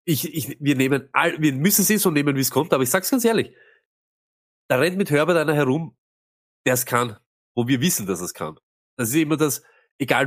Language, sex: German, male